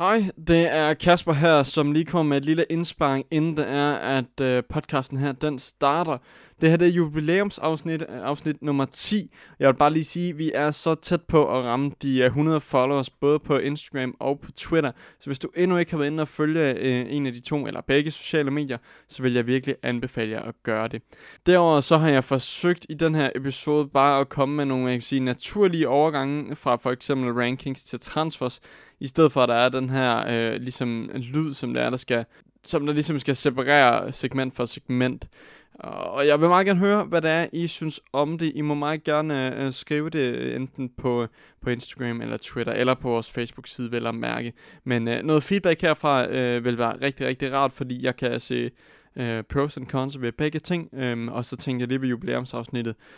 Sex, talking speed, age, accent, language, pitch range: male, 210 wpm, 20-39, native, Danish, 125-155 Hz